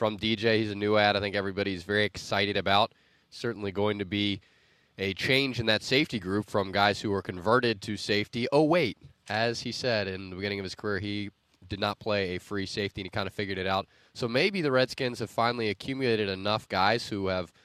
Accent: American